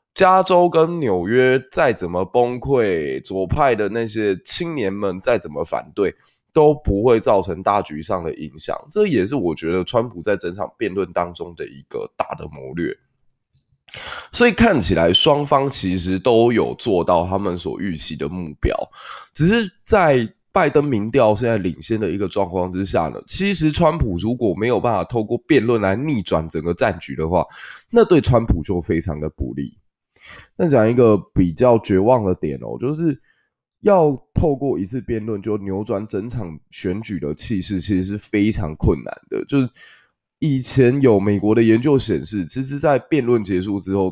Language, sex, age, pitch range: Chinese, male, 20-39, 95-140 Hz